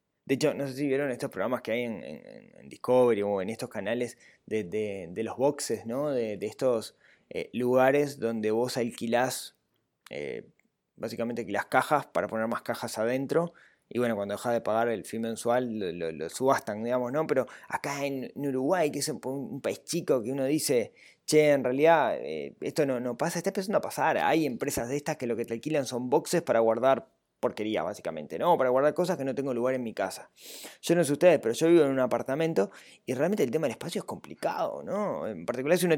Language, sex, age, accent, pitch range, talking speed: Spanish, male, 20-39, Argentinian, 120-150 Hz, 215 wpm